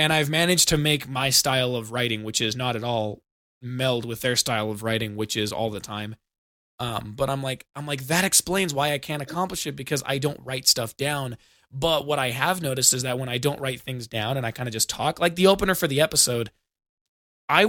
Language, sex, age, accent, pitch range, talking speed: English, male, 20-39, American, 110-145 Hz, 240 wpm